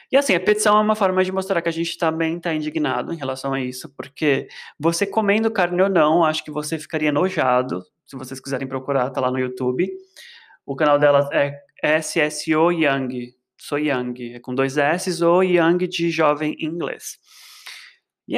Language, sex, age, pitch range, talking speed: Portuguese, male, 20-39, 135-170 Hz, 185 wpm